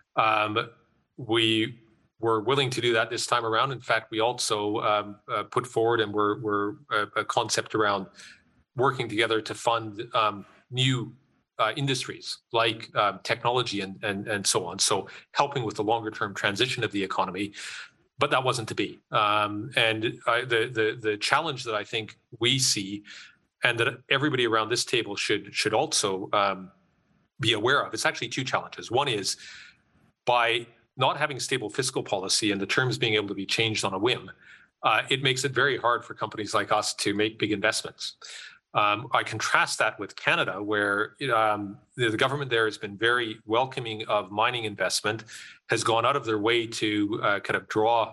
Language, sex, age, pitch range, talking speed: English, male, 30-49, 105-115 Hz, 185 wpm